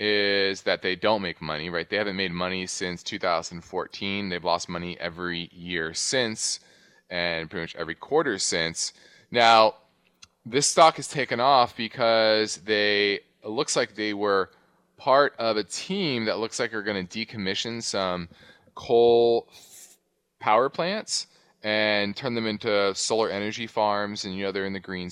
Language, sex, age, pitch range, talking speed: English, male, 20-39, 90-120 Hz, 160 wpm